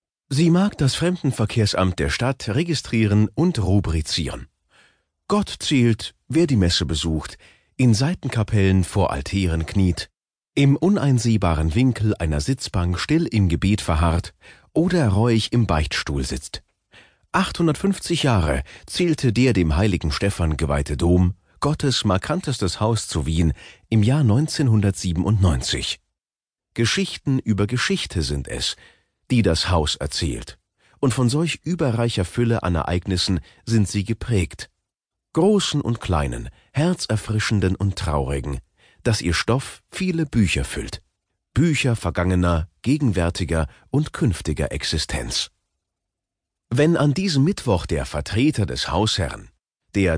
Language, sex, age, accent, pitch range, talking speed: German, male, 40-59, German, 85-125 Hz, 115 wpm